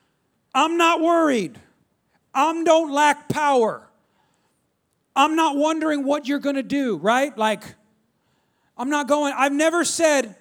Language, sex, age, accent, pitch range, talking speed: English, male, 40-59, American, 185-275 Hz, 135 wpm